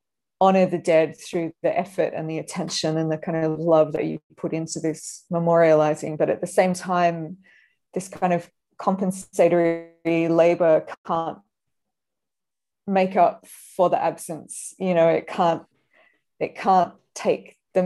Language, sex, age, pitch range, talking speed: English, female, 20-39, 160-185 Hz, 150 wpm